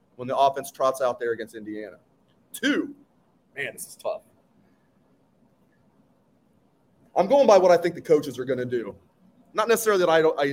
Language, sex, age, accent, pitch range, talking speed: English, male, 30-49, American, 135-190 Hz, 175 wpm